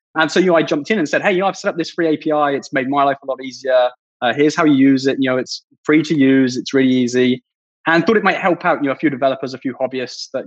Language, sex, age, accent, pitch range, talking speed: English, male, 20-39, British, 130-160 Hz, 315 wpm